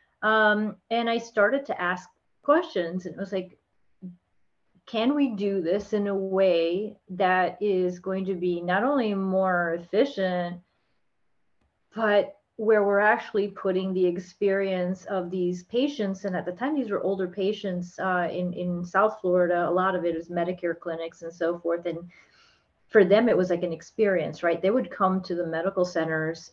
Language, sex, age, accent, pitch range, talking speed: English, female, 30-49, American, 175-200 Hz, 170 wpm